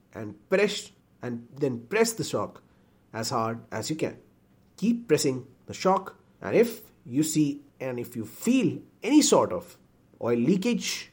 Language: Hindi